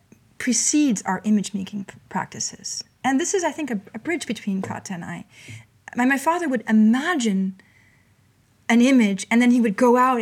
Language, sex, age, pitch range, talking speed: English, female, 30-49, 190-235 Hz, 175 wpm